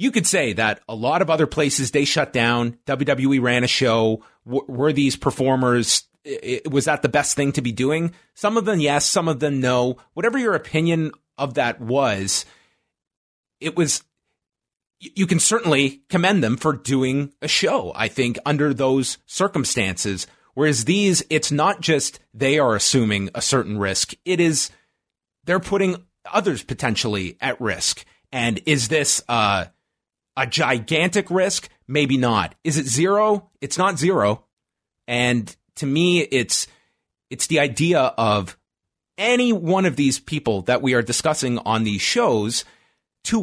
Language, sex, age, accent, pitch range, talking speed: English, male, 30-49, American, 120-165 Hz, 155 wpm